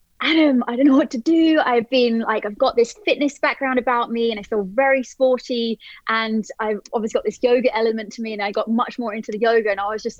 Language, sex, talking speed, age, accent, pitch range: English, female, 255 wpm, 20-39, British, 210-245 Hz